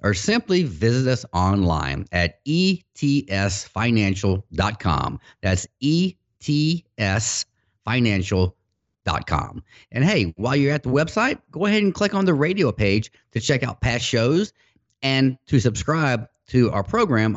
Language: English